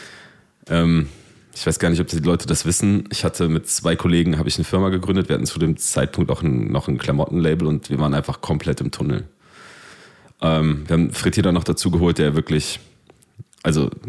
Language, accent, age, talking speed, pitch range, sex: German, German, 30-49, 205 wpm, 75-95 Hz, male